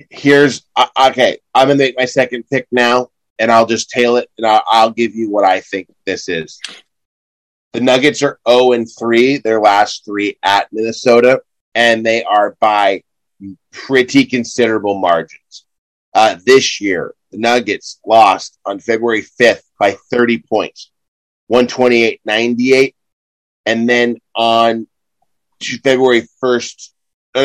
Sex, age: male, 30-49